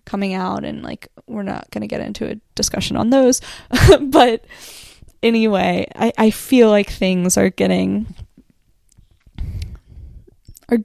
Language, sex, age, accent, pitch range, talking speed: English, female, 10-29, American, 190-230 Hz, 135 wpm